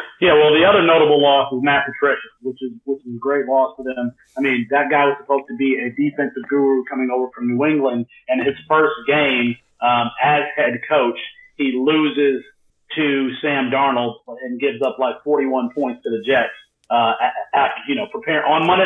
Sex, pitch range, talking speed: male, 130-150 Hz, 205 wpm